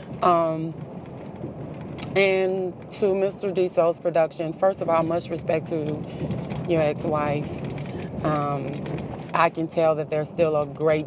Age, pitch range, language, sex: 20-39, 150-175 Hz, English, female